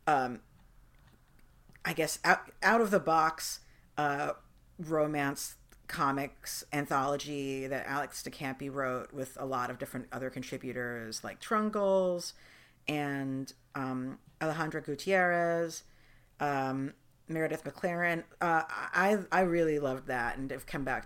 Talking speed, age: 125 wpm, 50-69